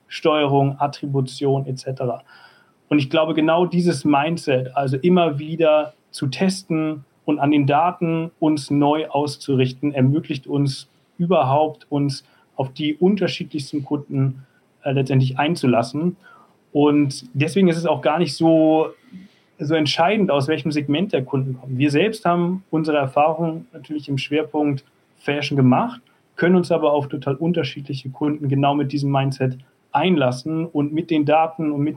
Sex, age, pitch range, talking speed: male, 40-59, 135-155 Hz, 145 wpm